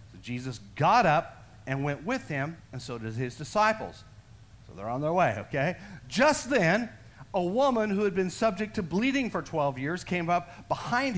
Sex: male